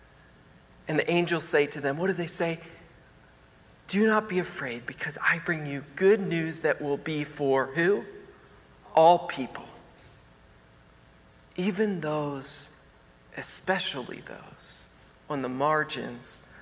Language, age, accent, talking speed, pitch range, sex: English, 40-59, American, 125 wpm, 160-230 Hz, male